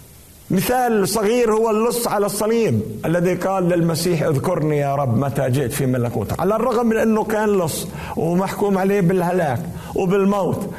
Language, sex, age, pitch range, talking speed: Arabic, male, 50-69, 160-220 Hz, 145 wpm